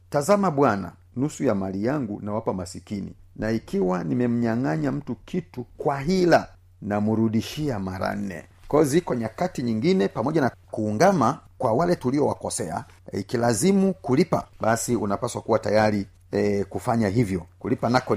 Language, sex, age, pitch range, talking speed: Swahili, male, 40-59, 100-140 Hz, 140 wpm